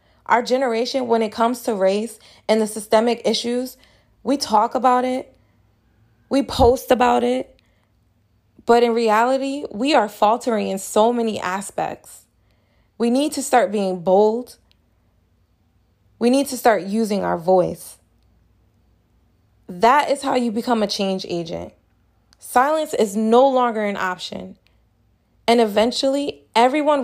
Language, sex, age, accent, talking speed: English, female, 20-39, American, 130 wpm